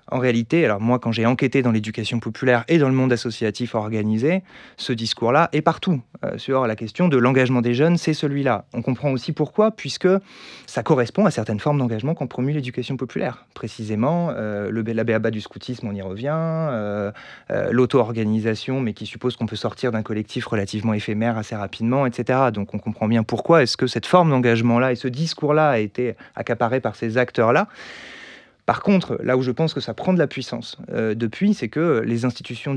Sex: male